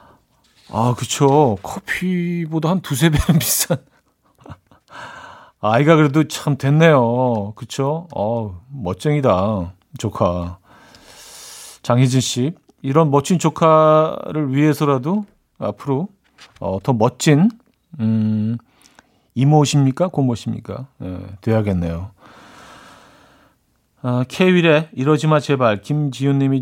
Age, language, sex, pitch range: 40-59, Korean, male, 120-160 Hz